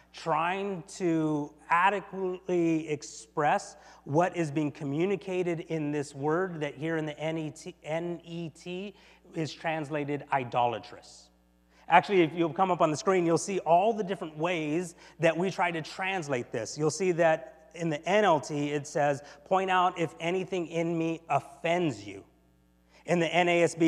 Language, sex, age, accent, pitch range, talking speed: English, male, 30-49, American, 130-175 Hz, 150 wpm